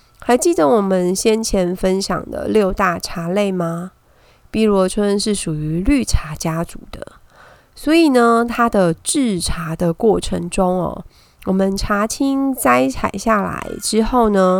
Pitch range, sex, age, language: 185-240 Hz, female, 20-39, Chinese